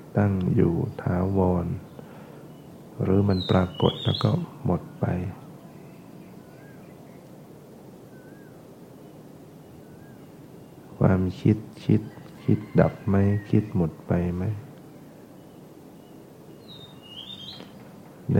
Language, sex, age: Thai, male, 60-79